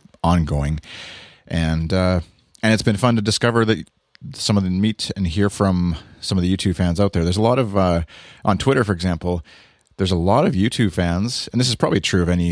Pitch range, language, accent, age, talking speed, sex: 80-100 Hz, English, American, 30-49, 220 wpm, male